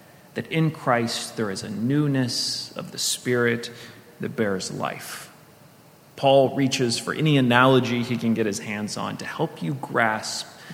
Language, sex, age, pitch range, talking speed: English, male, 30-49, 115-135 Hz, 155 wpm